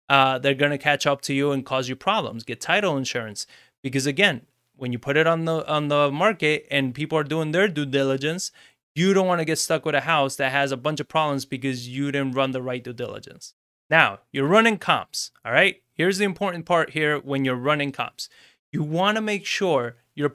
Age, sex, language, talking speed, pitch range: 30-49, male, English, 225 wpm, 135-175 Hz